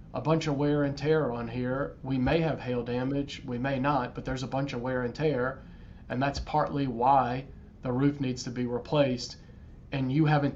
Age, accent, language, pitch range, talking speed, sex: 40-59, American, English, 125-145 Hz, 210 wpm, male